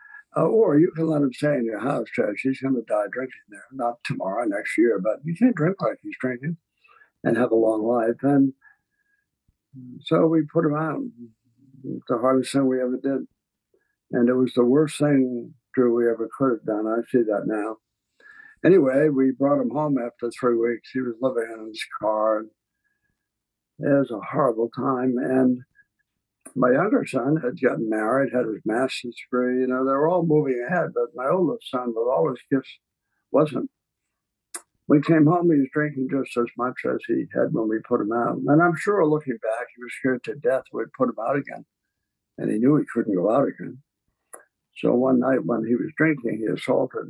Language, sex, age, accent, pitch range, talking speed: English, male, 60-79, American, 120-150 Hz, 200 wpm